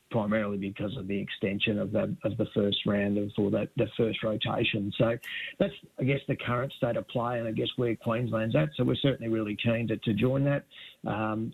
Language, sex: English, male